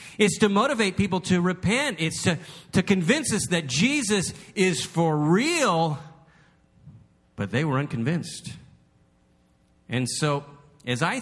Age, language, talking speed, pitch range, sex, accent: 40-59, English, 130 wpm, 120-185 Hz, male, American